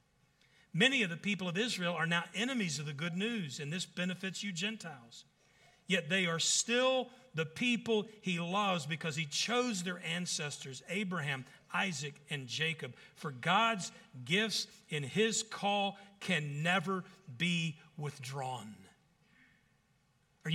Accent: American